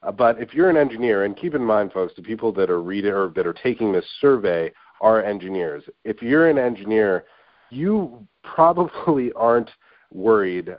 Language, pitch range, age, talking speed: English, 90-120 Hz, 40-59, 170 wpm